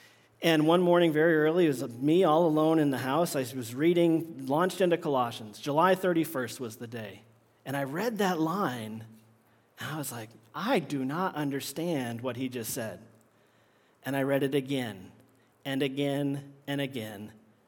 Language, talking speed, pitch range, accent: English, 170 wpm, 125-170 Hz, American